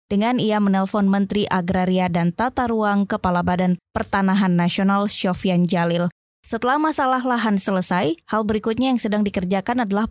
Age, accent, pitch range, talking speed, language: 20-39, native, 195-255 Hz, 140 wpm, Indonesian